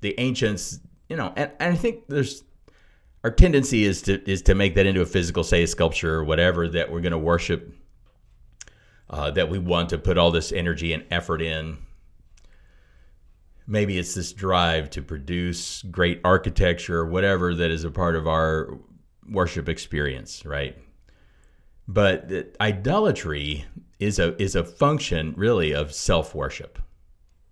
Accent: American